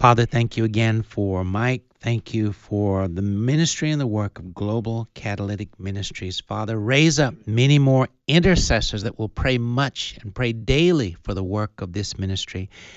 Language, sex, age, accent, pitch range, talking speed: English, male, 60-79, American, 100-130 Hz, 170 wpm